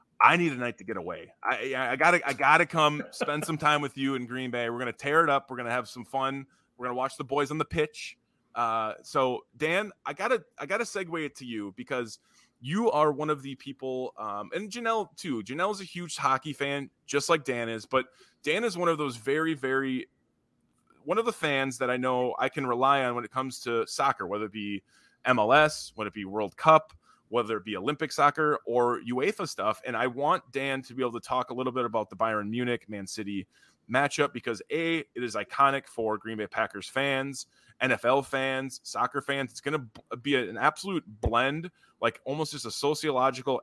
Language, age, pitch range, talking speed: English, 20-39, 120-150 Hz, 215 wpm